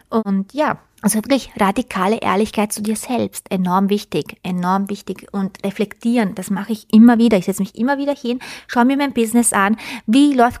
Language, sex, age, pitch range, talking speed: German, female, 30-49, 205-245 Hz, 185 wpm